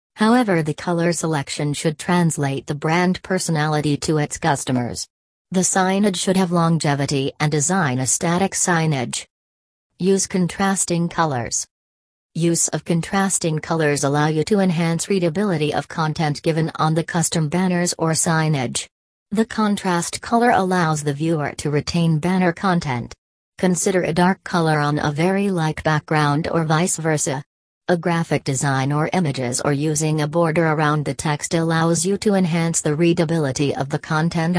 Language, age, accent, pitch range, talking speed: English, 40-59, American, 145-180 Hz, 145 wpm